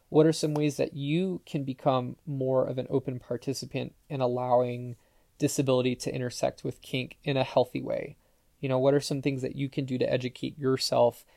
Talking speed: 195 wpm